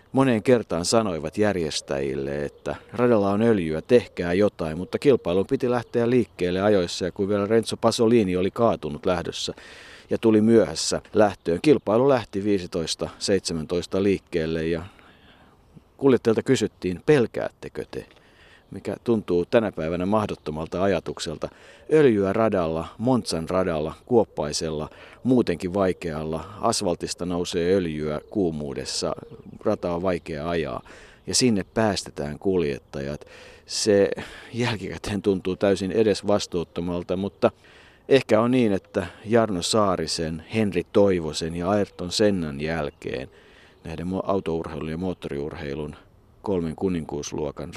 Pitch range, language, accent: 80-110 Hz, Finnish, native